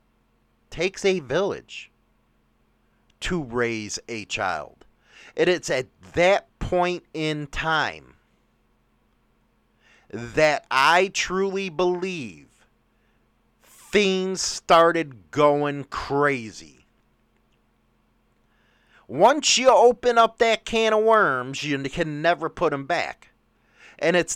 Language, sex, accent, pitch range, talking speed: English, male, American, 125-195 Hz, 95 wpm